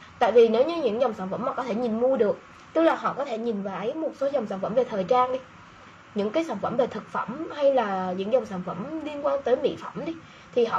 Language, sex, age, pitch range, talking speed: Vietnamese, female, 20-39, 220-295 Hz, 290 wpm